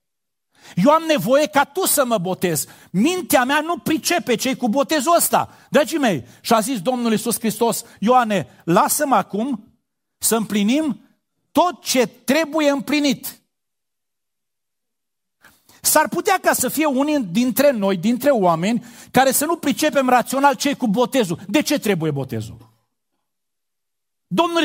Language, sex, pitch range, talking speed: Romanian, male, 190-280 Hz, 135 wpm